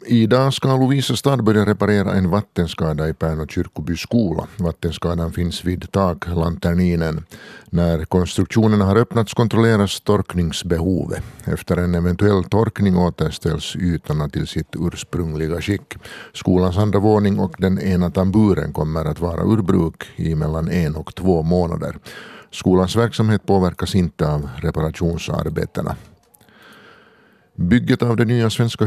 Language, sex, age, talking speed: Swedish, male, 50-69, 125 wpm